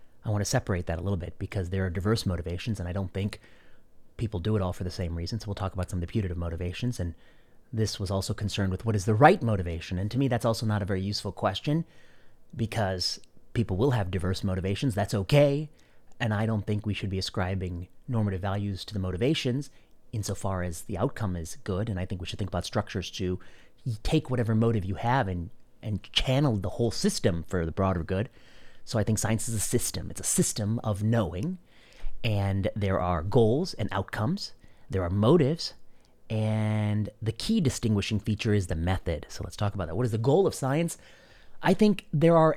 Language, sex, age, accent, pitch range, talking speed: English, male, 30-49, American, 95-125 Hz, 210 wpm